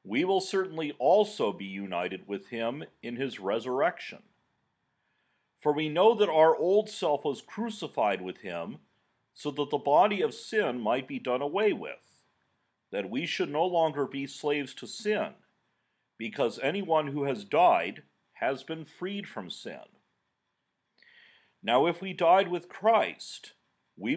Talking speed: 145 wpm